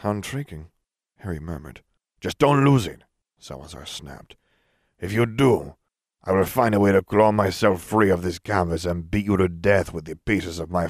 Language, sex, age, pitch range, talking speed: English, male, 40-59, 85-105 Hz, 195 wpm